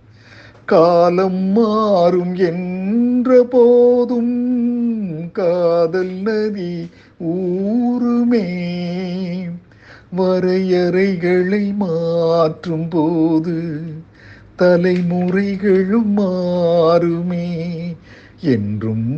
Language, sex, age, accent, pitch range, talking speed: Tamil, male, 50-69, native, 140-185 Hz, 40 wpm